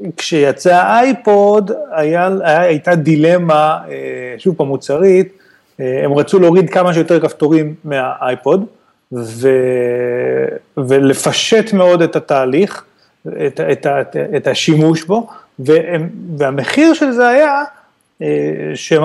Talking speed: 100 wpm